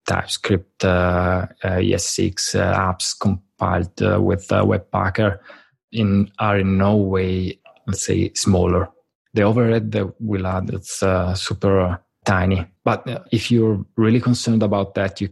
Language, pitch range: English, 95-110 Hz